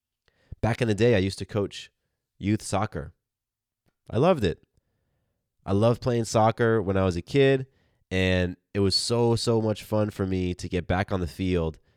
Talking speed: 185 wpm